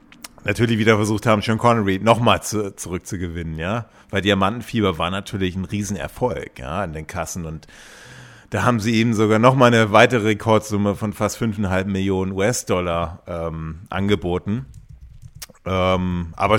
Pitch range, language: 95-110 Hz, German